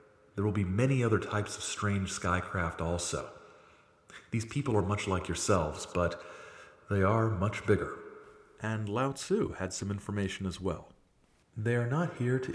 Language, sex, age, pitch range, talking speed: English, male, 40-59, 90-110 Hz, 165 wpm